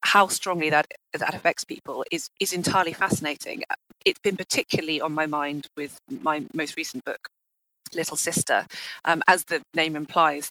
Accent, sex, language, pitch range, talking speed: British, female, English, 150-180 Hz, 160 wpm